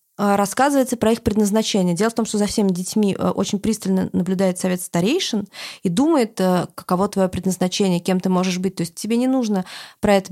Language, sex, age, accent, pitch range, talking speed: Russian, female, 20-39, native, 185-220 Hz, 185 wpm